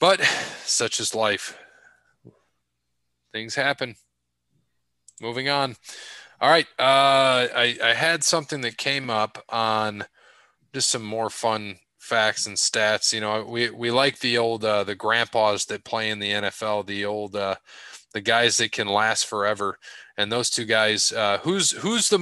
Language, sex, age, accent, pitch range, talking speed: English, male, 20-39, American, 100-130 Hz, 155 wpm